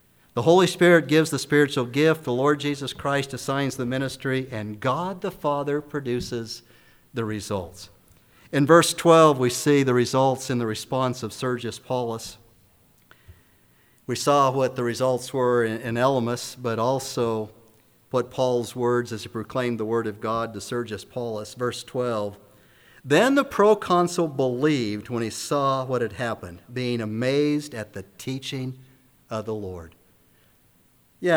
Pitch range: 110-135 Hz